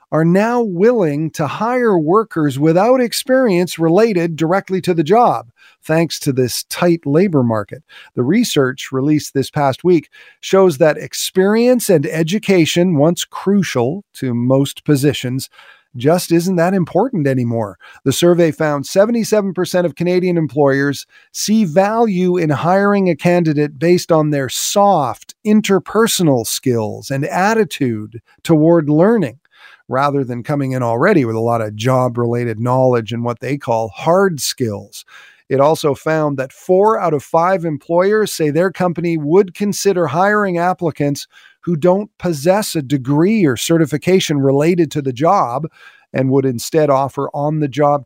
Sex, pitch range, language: male, 135-185 Hz, English